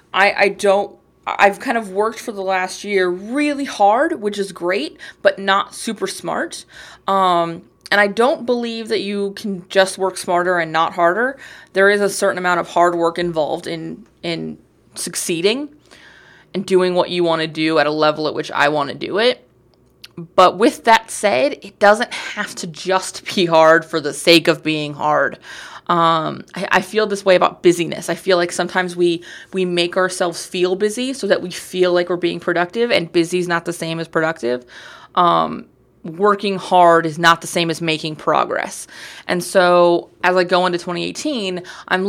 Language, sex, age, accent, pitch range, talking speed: English, female, 20-39, American, 170-200 Hz, 190 wpm